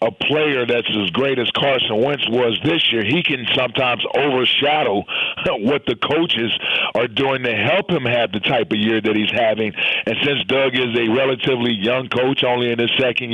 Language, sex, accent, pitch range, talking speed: English, male, American, 120-135 Hz, 195 wpm